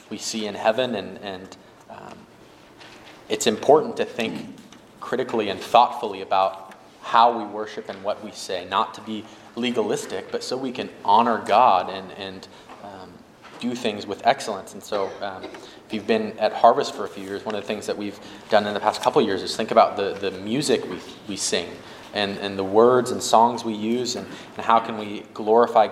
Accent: American